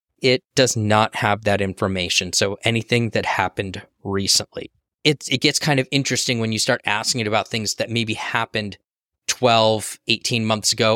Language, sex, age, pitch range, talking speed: English, male, 20-39, 105-125 Hz, 165 wpm